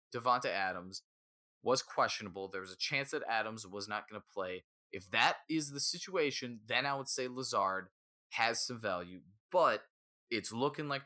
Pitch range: 95-125 Hz